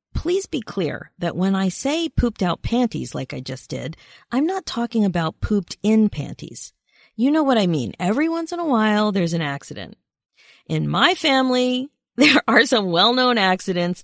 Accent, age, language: American, 40-59, English